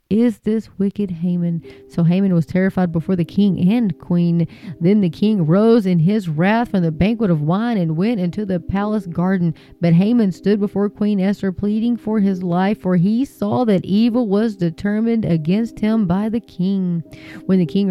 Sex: female